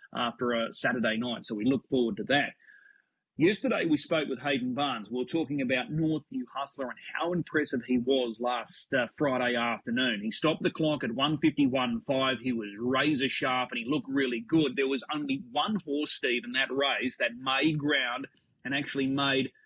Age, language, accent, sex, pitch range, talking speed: 30-49, English, Australian, male, 125-155 Hz, 190 wpm